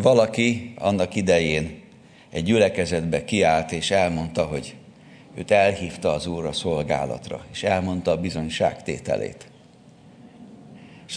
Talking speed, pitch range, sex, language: 105 wpm, 90-130 Hz, male, Hungarian